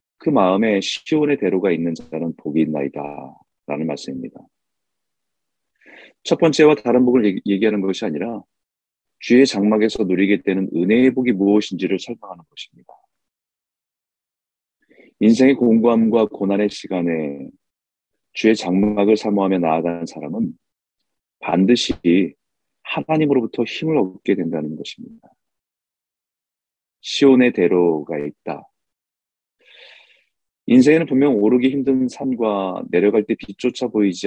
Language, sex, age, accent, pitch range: Korean, male, 40-59, native, 85-125 Hz